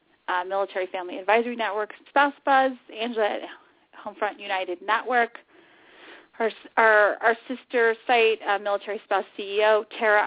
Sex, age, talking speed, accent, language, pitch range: female, 30-49, 130 wpm, American, English, 195-245 Hz